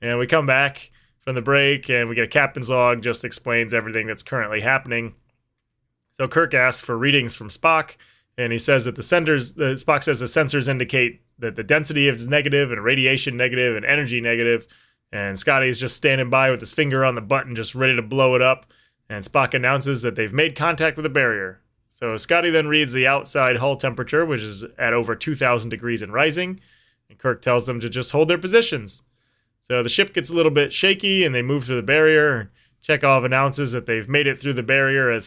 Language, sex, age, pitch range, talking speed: English, male, 20-39, 120-140 Hz, 215 wpm